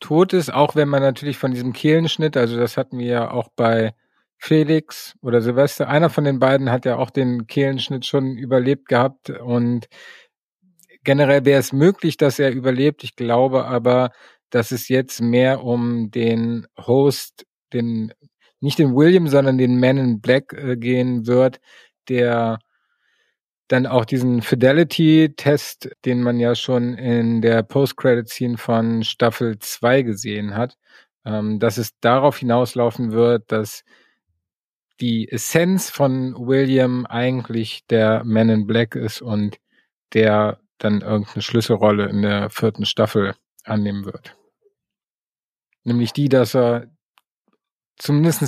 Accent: German